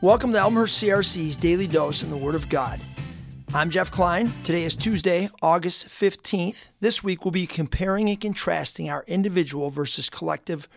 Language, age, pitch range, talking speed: English, 40-59, 150-195 Hz, 165 wpm